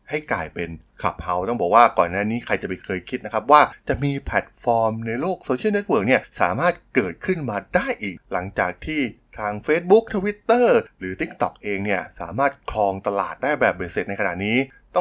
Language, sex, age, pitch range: Thai, male, 20-39, 95-140 Hz